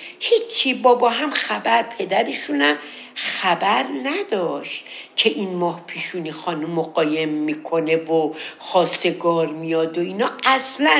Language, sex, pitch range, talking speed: Persian, female, 175-260 Hz, 115 wpm